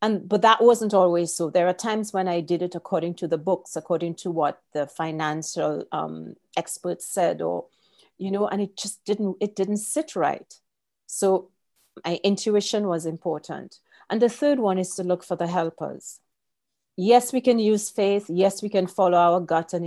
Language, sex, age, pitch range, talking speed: English, female, 40-59, 165-205 Hz, 190 wpm